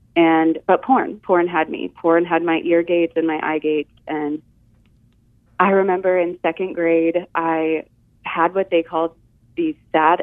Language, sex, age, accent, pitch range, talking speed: English, female, 30-49, American, 160-180 Hz, 165 wpm